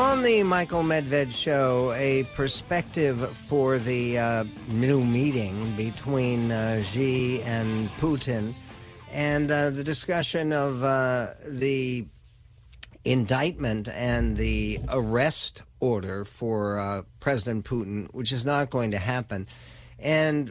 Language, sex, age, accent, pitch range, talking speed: English, male, 50-69, American, 120-145 Hz, 115 wpm